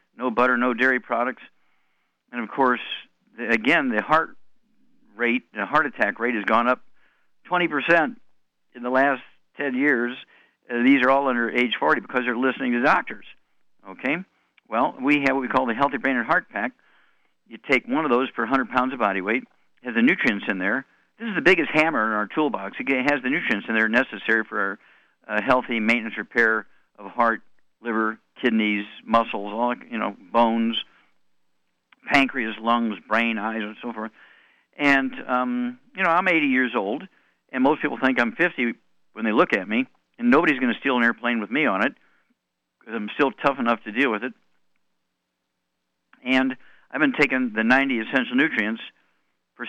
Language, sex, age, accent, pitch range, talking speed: English, male, 50-69, American, 110-130 Hz, 180 wpm